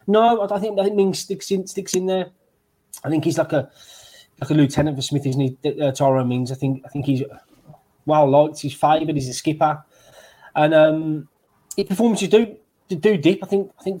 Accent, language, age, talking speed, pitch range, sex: British, English, 20-39, 210 wpm, 160-195 Hz, male